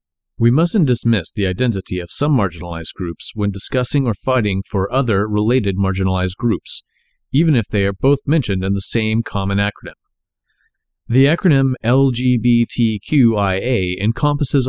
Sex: male